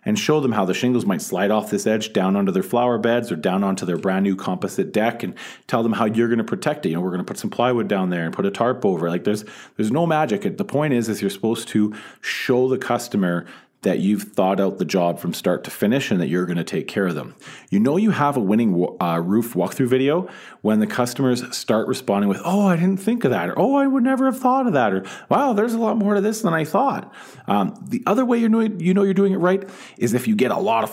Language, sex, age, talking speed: English, male, 40-59, 270 wpm